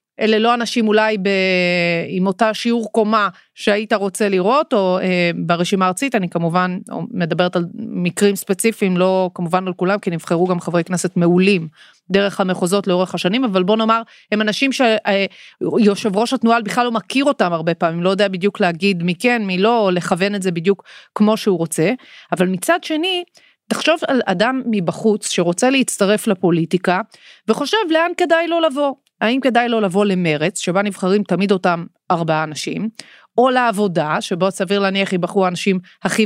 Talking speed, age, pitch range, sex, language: 165 wpm, 30-49, 185-240 Hz, female, Hebrew